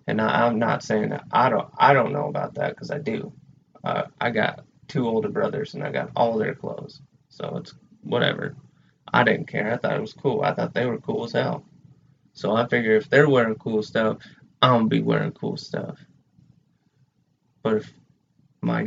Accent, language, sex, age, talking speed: American, English, male, 20-39, 205 wpm